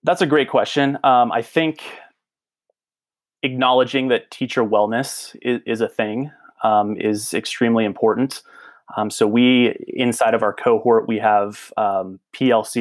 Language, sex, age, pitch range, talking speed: English, male, 20-39, 105-125 Hz, 140 wpm